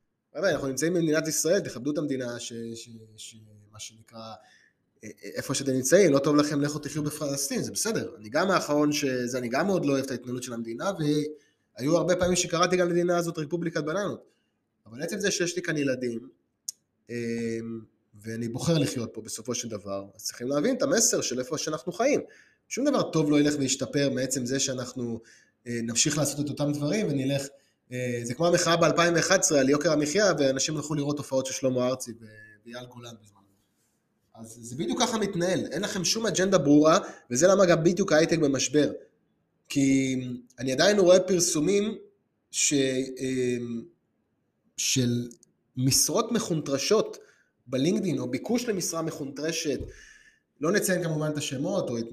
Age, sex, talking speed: 20-39, male, 160 wpm